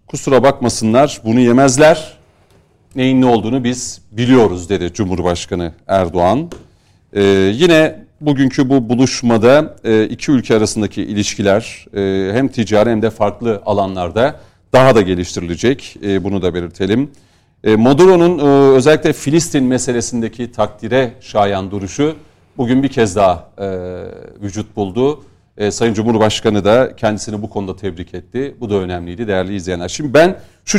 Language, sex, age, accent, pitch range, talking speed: Turkish, male, 40-59, native, 100-135 Hz, 125 wpm